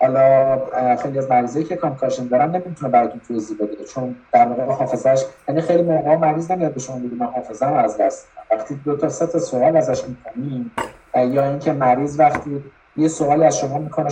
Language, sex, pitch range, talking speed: Persian, male, 125-155 Hz, 185 wpm